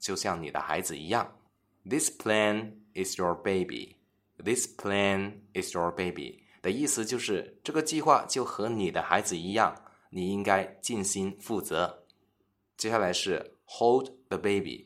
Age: 20-39